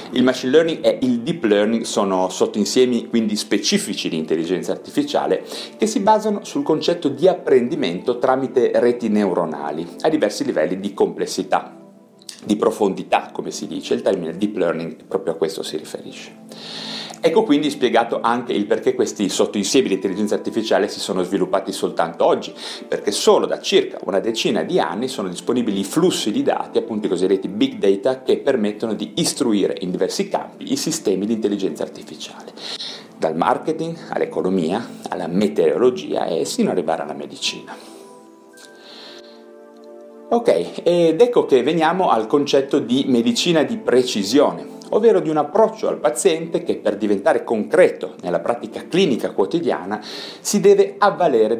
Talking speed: 150 wpm